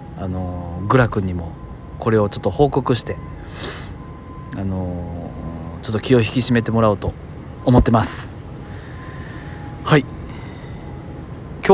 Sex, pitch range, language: male, 90-130 Hz, Japanese